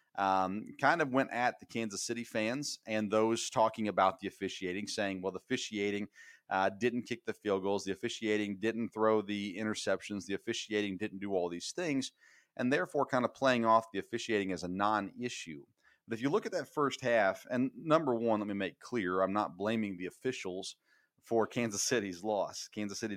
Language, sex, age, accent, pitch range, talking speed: English, male, 40-59, American, 100-130 Hz, 195 wpm